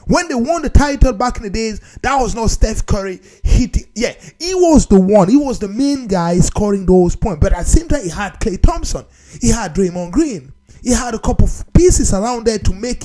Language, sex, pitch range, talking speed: English, male, 205-335 Hz, 235 wpm